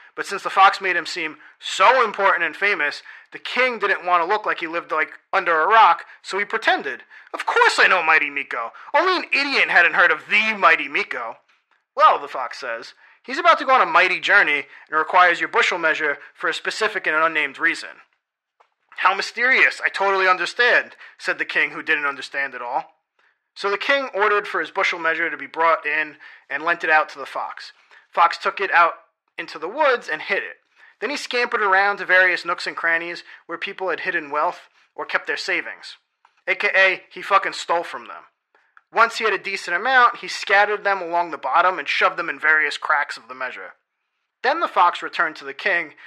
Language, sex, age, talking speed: English, male, 30-49, 205 wpm